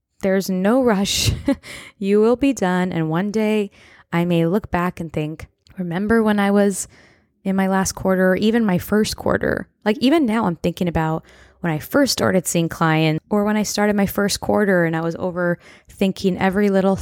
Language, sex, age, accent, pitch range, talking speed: English, female, 20-39, American, 165-200 Hz, 190 wpm